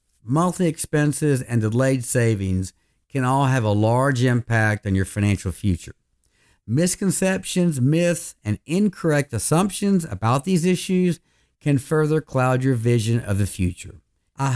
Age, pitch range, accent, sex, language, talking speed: 50-69, 105-155 Hz, American, male, English, 130 wpm